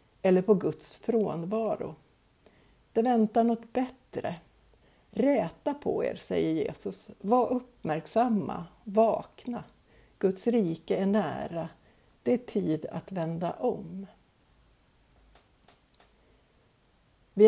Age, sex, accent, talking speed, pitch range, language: 60-79, female, native, 95 wpm, 180-225 Hz, Swedish